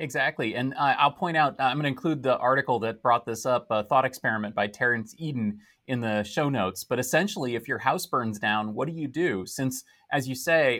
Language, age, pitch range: English, 30-49, 125-165 Hz